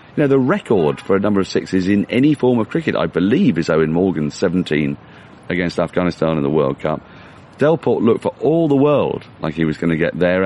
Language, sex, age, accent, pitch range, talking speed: English, male, 40-59, British, 85-115 Hz, 225 wpm